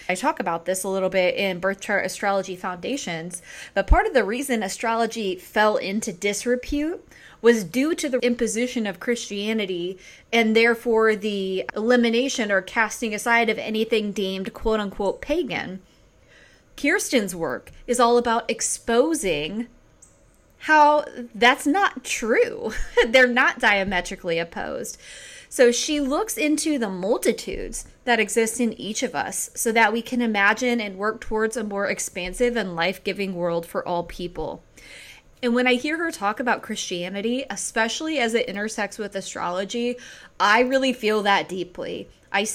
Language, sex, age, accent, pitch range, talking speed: English, female, 20-39, American, 200-245 Hz, 145 wpm